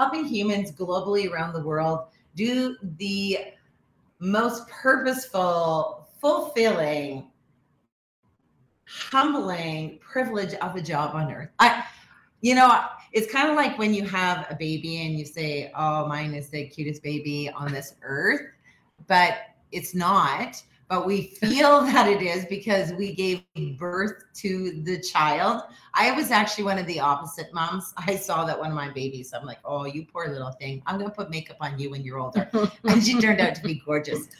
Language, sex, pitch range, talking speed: English, female, 155-210 Hz, 165 wpm